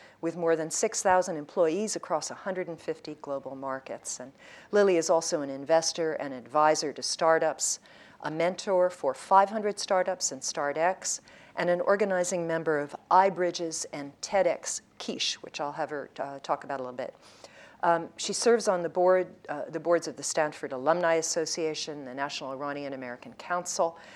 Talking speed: 155 wpm